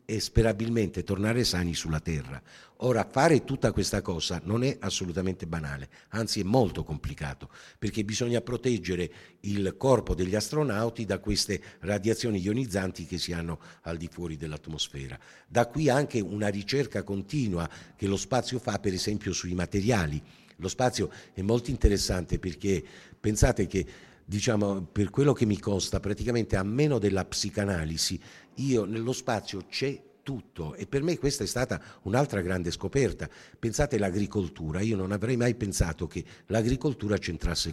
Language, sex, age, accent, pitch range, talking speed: Italian, male, 50-69, native, 90-120 Hz, 150 wpm